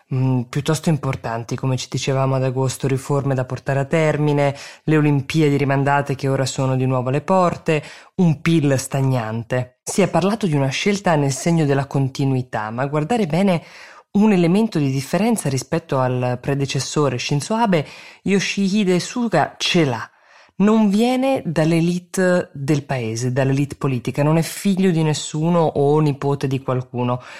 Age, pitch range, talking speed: 20-39, 135-175 Hz, 150 wpm